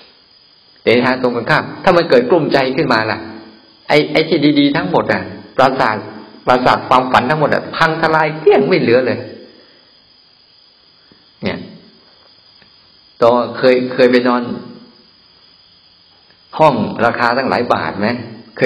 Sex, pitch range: male, 110-135 Hz